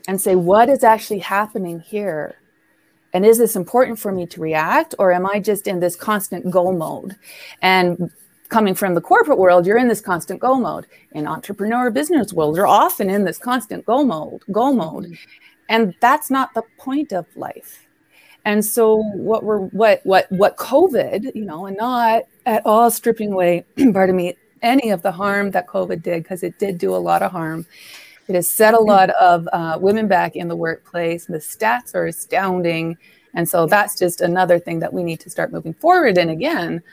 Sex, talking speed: female, 190 wpm